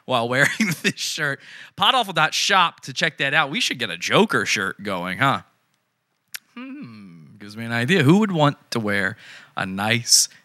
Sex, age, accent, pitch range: male, 20-39, American, 105-130 Hz